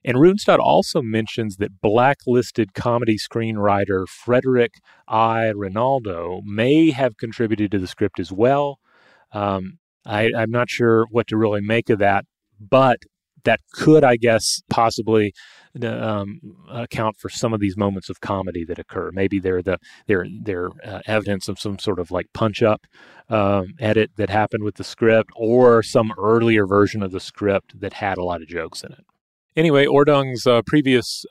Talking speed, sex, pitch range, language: 160 wpm, male, 100-115 Hz, English